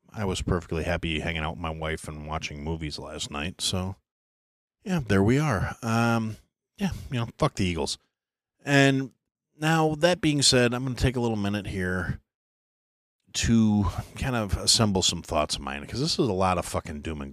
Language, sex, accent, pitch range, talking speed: English, male, American, 80-105 Hz, 195 wpm